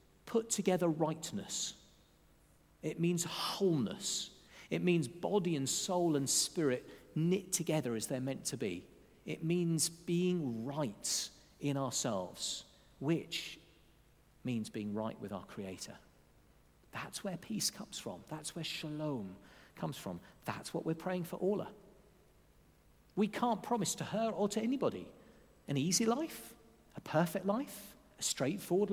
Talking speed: 135 wpm